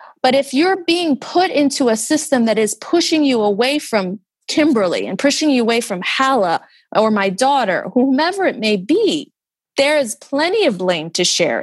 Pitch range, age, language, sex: 195-275 Hz, 30-49, English, female